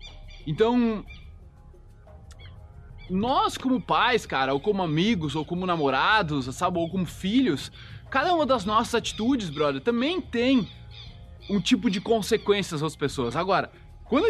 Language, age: Portuguese, 20-39